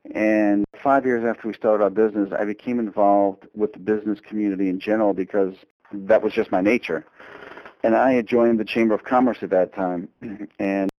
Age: 50-69